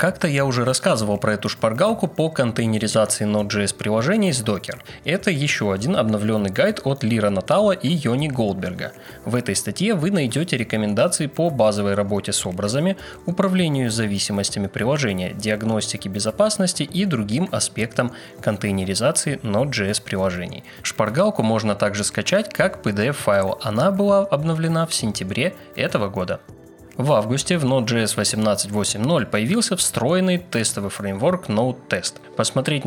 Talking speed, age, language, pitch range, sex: 130 wpm, 20-39, Russian, 105-160 Hz, male